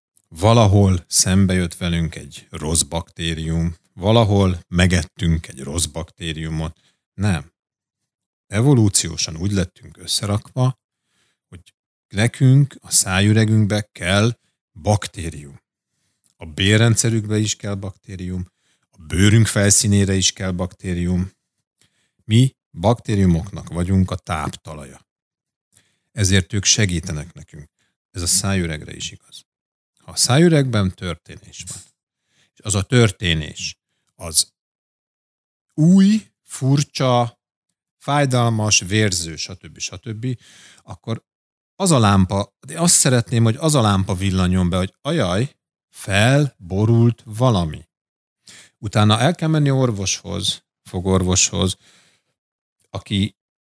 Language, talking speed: Hungarian, 95 wpm